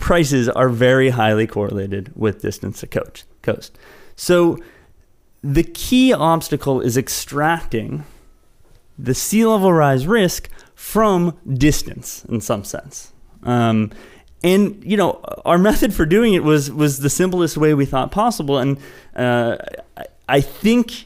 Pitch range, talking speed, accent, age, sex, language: 120-160 Hz, 125 wpm, American, 20-39, male, English